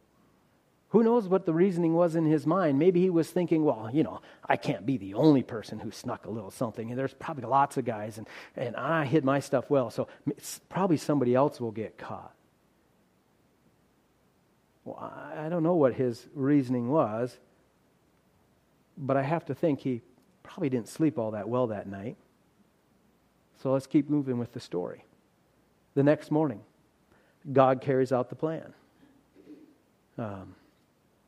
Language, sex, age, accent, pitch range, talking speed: English, male, 40-59, American, 120-150 Hz, 165 wpm